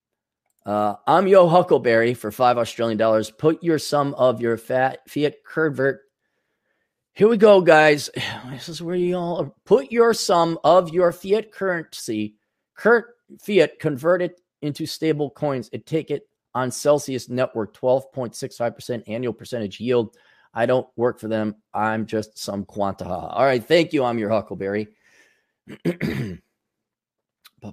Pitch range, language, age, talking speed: 110-165 Hz, English, 30-49, 145 wpm